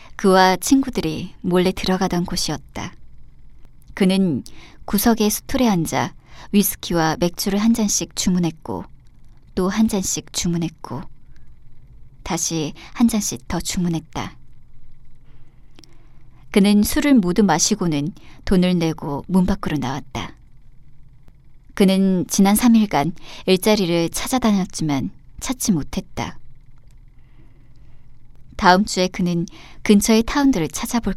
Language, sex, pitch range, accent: Korean, male, 135-200 Hz, native